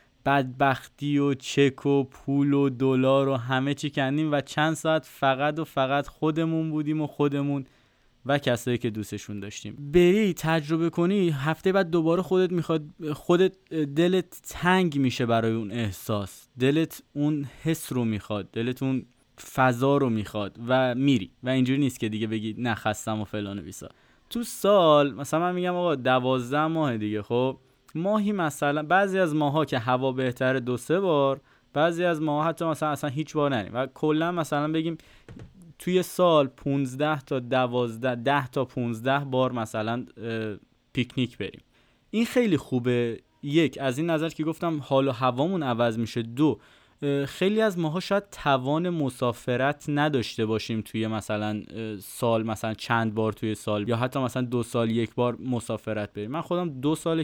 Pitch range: 115-155 Hz